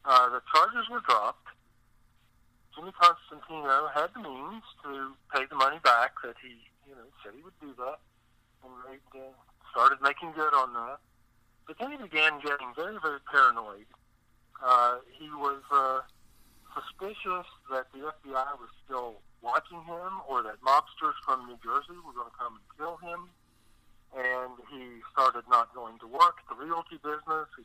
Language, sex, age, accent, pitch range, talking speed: English, male, 50-69, American, 120-160 Hz, 165 wpm